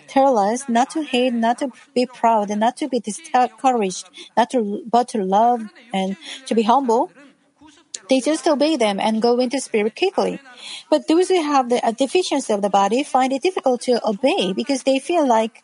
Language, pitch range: Korean, 225-290 Hz